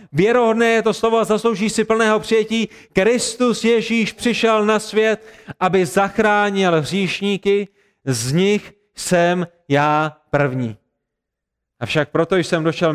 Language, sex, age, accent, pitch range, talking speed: Czech, male, 30-49, native, 145-175 Hz, 120 wpm